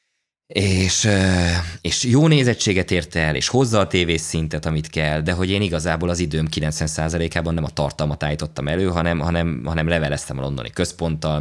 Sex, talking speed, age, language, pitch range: male, 170 wpm, 20-39, Hungarian, 80-100 Hz